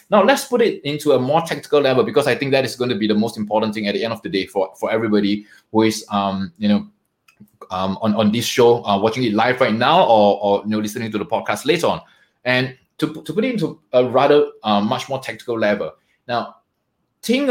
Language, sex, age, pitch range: English, male, 20-39, 115-155 Hz